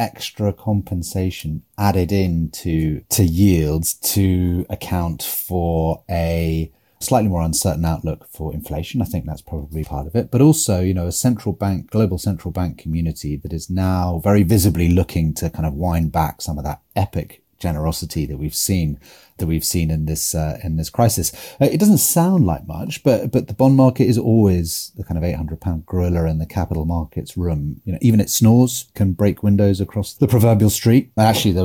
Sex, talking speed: male, 195 wpm